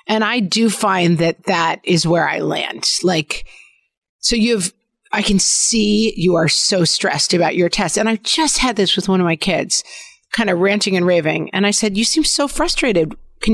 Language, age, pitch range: English, 40-59, 170-220 Hz